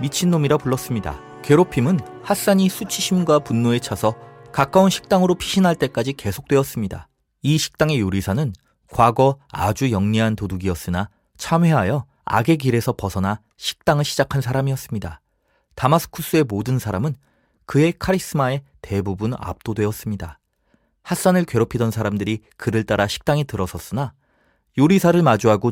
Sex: male